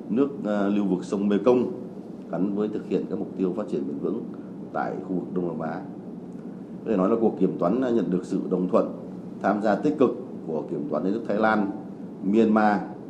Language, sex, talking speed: Vietnamese, male, 215 wpm